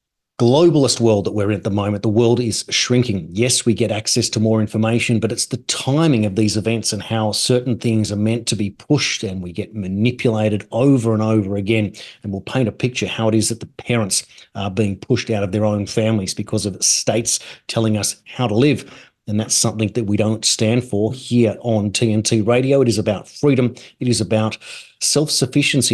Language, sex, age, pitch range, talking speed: English, male, 30-49, 105-130 Hz, 210 wpm